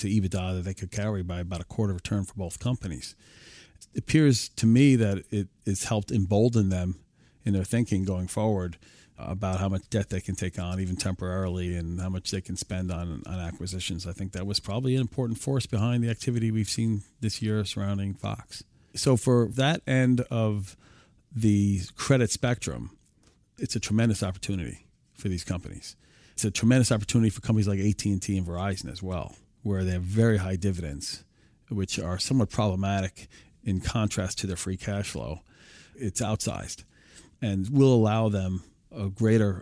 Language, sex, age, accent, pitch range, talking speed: English, male, 40-59, American, 95-115 Hz, 175 wpm